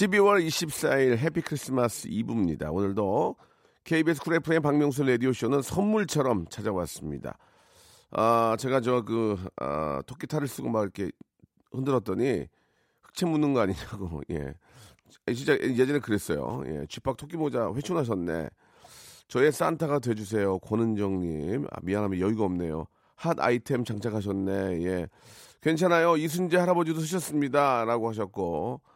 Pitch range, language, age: 105-150 Hz, Korean, 40-59